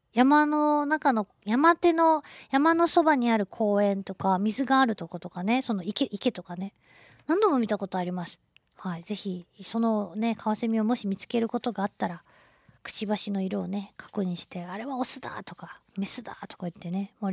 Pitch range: 180-245 Hz